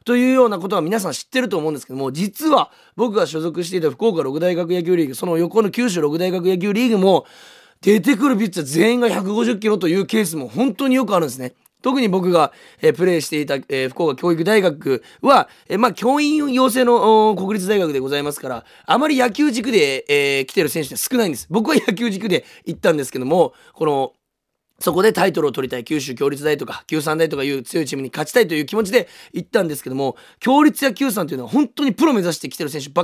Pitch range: 165-255 Hz